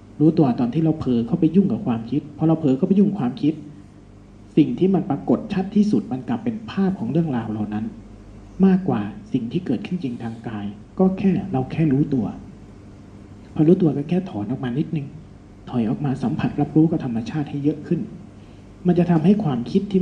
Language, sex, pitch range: Thai, male, 115-185 Hz